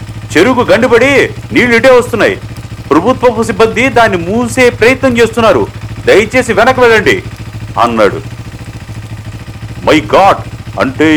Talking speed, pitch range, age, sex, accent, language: 90 wpm, 110-150 Hz, 50-69, male, native, Telugu